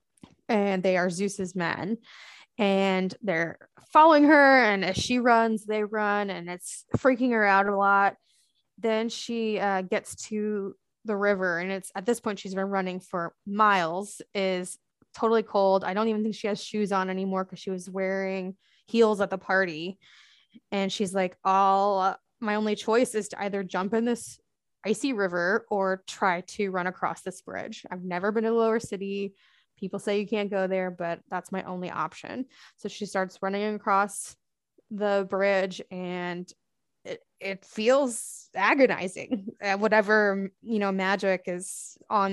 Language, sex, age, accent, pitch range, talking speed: English, female, 20-39, American, 190-215 Hz, 165 wpm